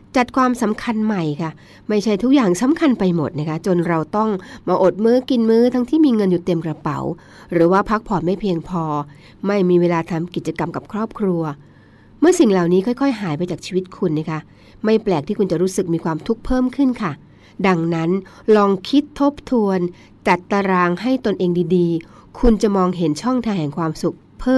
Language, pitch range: Thai, 165-230 Hz